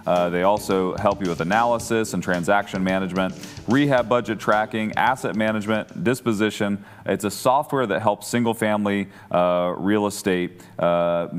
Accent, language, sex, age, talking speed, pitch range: American, English, male, 30-49, 130 wpm, 95-115 Hz